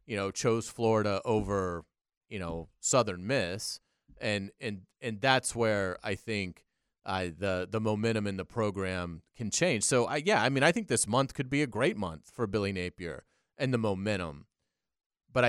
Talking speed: 180 wpm